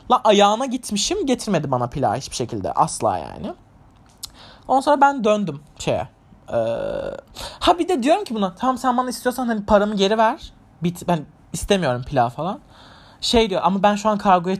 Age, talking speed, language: 30-49, 175 wpm, Turkish